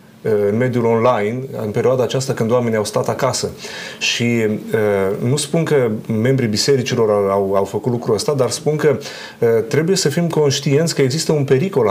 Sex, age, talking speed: male, 30-49, 165 wpm